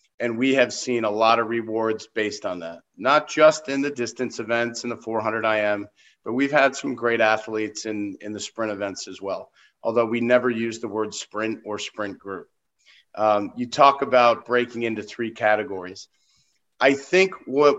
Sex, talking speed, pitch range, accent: male, 185 wpm, 110-125 Hz, American